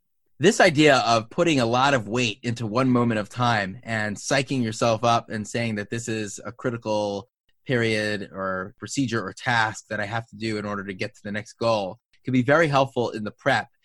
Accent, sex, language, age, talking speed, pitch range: American, male, English, 30-49, 210 wpm, 110-130 Hz